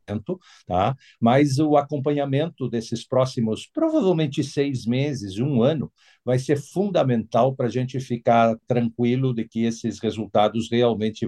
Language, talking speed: Portuguese, 130 wpm